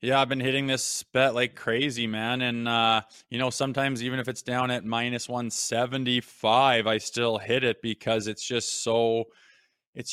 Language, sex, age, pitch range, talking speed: English, male, 20-39, 115-135 Hz, 180 wpm